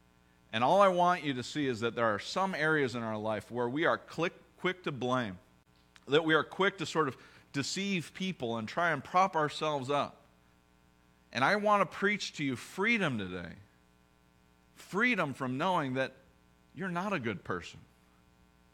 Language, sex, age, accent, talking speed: English, male, 40-59, American, 175 wpm